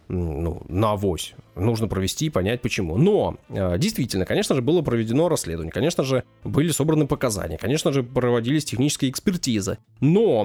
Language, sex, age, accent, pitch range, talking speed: Russian, male, 20-39, native, 110-150 Hz, 150 wpm